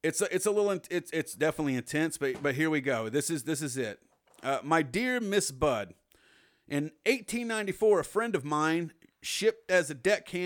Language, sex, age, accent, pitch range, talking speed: English, male, 40-59, American, 145-195 Hz, 195 wpm